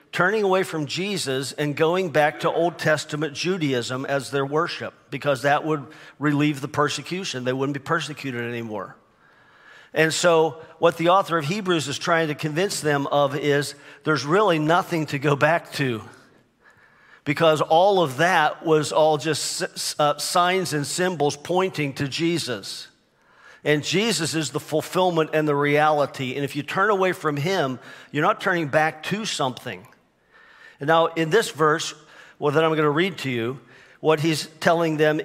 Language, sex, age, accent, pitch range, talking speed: English, male, 50-69, American, 145-170 Hz, 165 wpm